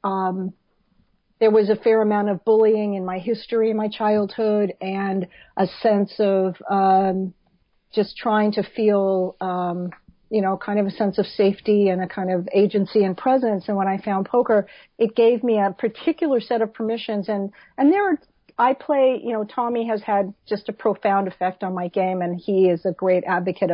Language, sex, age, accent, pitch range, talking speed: English, female, 50-69, American, 190-225 Hz, 190 wpm